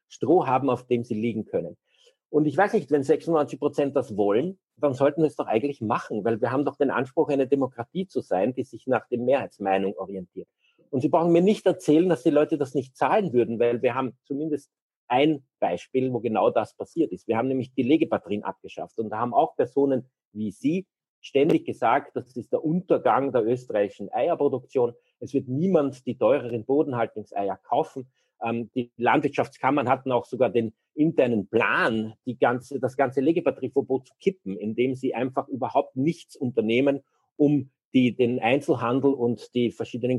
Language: German